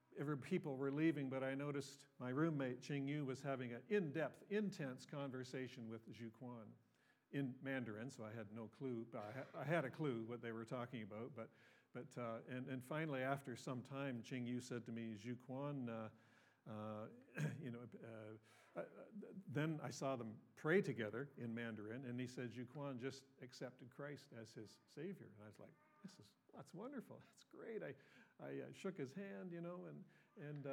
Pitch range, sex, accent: 125-150 Hz, male, American